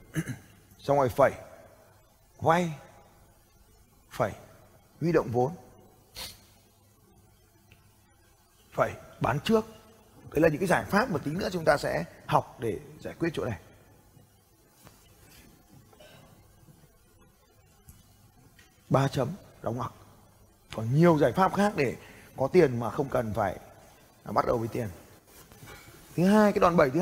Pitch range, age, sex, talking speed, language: 110-170 Hz, 20-39, male, 120 wpm, Vietnamese